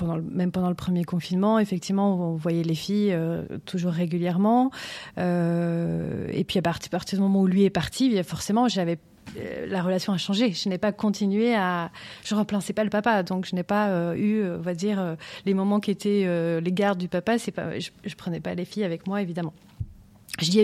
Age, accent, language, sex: 30-49, French, French, female